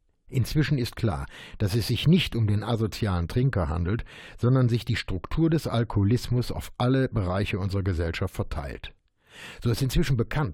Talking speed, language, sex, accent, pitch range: 160 wpm, German, male, German, 100-130 Hz